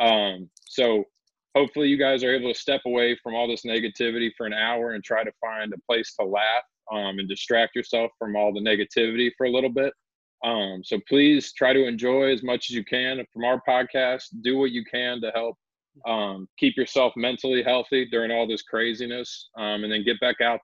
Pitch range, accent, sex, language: 110-130 Hz, American, male, English